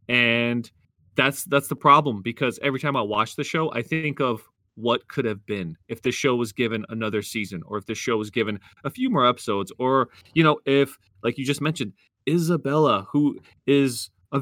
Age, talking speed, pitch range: 30-49, 200 wpm, 105-140 Hz